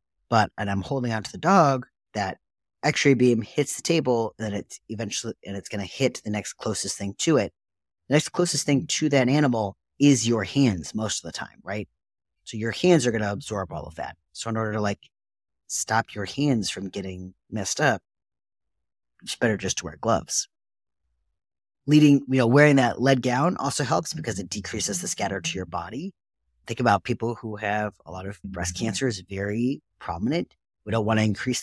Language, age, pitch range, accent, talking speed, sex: English, 30-49, 95-125 Hz, American, 200 wpm, male